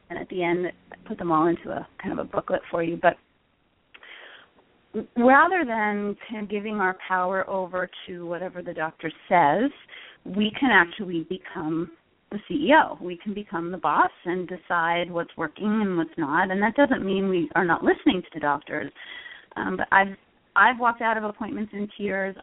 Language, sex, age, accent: English, female, 30-49, American